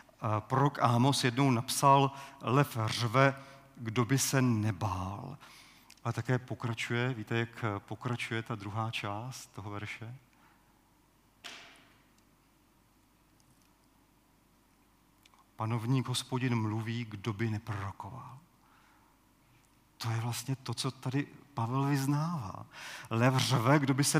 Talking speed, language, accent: 100 wpm, Czech, native